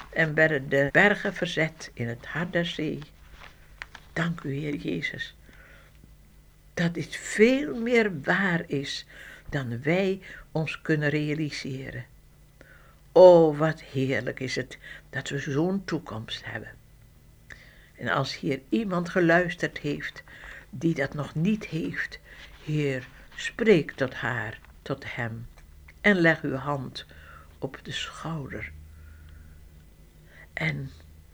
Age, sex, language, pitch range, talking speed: 60-79, female, Dutch, 110-165 Hz, 115 wpm